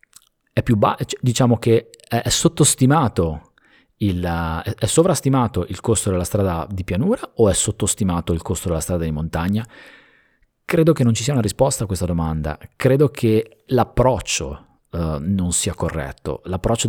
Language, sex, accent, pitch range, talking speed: Italian, male, native, 90-115 Hz, 165 wpm